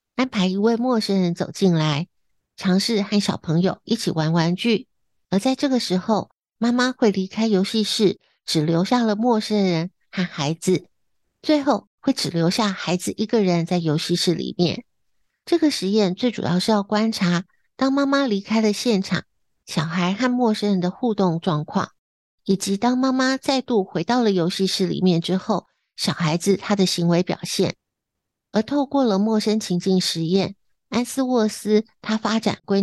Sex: female